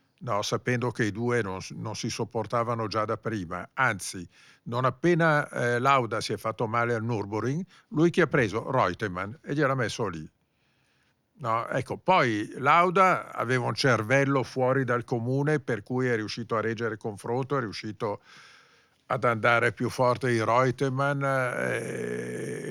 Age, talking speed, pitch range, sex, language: 50-69, 160 wpm, 105-130 Hz, male, Italian